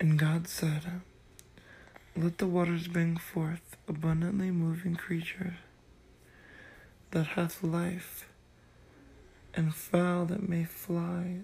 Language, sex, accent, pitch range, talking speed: English, male, American, 120-175 Hz, 100 wpm